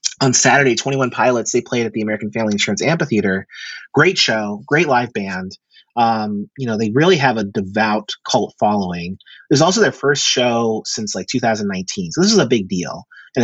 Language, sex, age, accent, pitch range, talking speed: English, male, 30-49, American, 110-155 Hz, 195 wpm